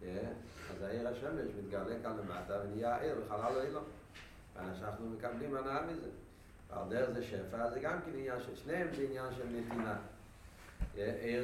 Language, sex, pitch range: Hebrew, male, 95-125 Hz